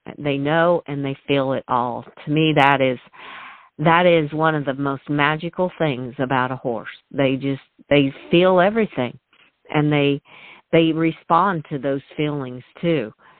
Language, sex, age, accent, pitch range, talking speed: English, female, 50-69, American, 130-155 Hz, 155 wpm